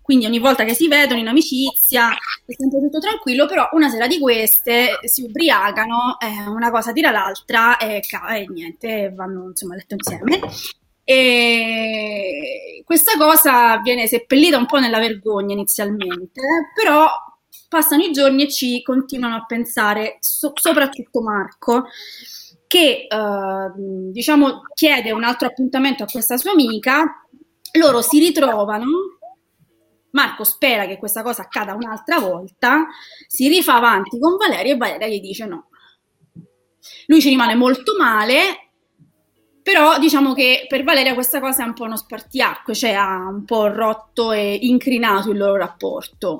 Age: 20-39